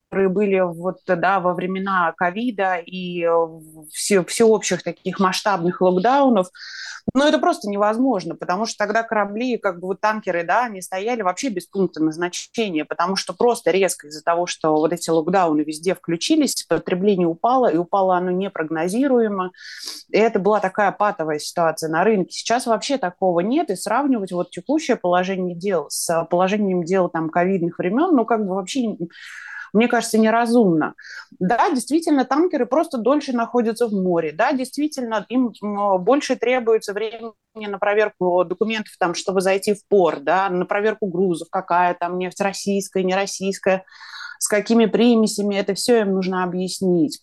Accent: native